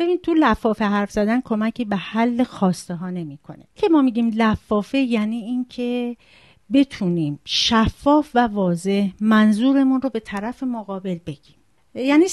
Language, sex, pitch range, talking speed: Persian, female, 190-235 Hz, 135 wpm